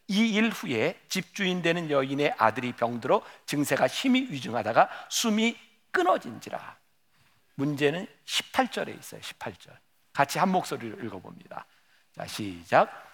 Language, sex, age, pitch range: Korean, male, 50-69, 145-230 Hz